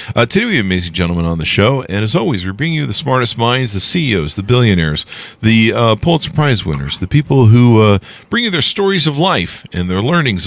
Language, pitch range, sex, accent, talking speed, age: English, 95-140 Hz, male, American, 230 wpm, 50-69